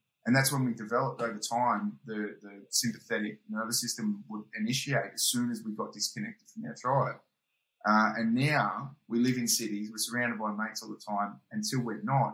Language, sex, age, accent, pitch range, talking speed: English, male, 20-39, Australian, 105-135 Hz, 195 wpm